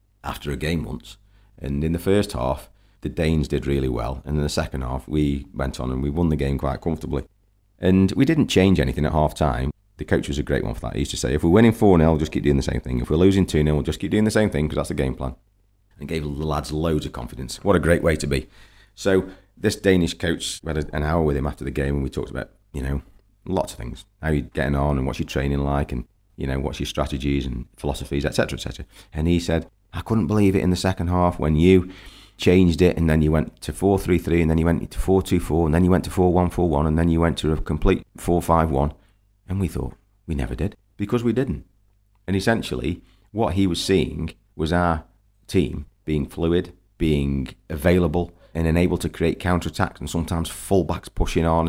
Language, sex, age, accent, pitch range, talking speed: English, male, 40-59, British, 75-95 Hz, 235 wpm